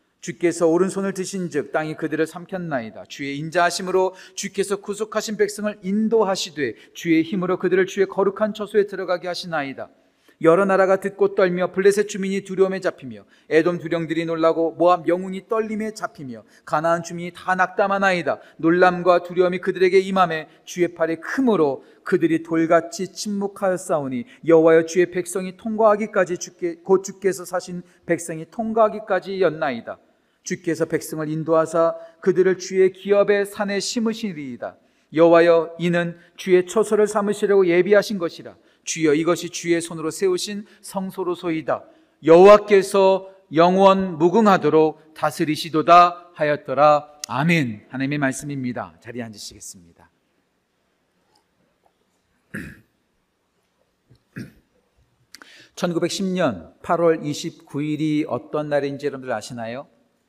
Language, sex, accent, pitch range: Korean, male, native, 165-195 Hz